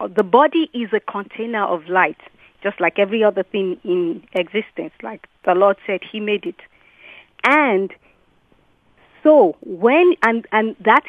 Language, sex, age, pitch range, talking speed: English, female, 40-59, 205-260 Hz, 145 wpm